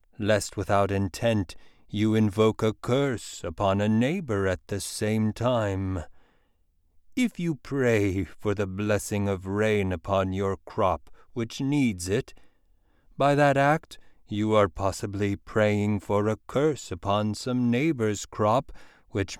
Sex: male